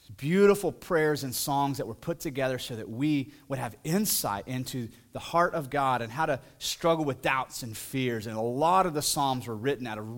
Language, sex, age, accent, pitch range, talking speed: English, male, 30-49, American, 115-145 Hz, 220 wpm